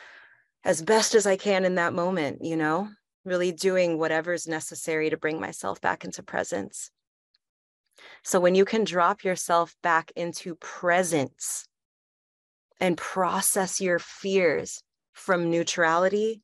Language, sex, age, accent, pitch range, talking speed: English, female, 30-49, American, 165-195 Hz, 130 wpm